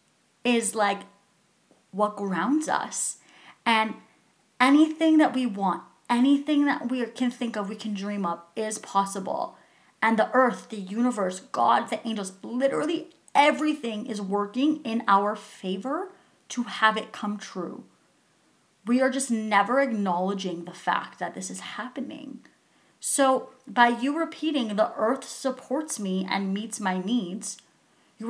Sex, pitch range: female, 200-255 Hz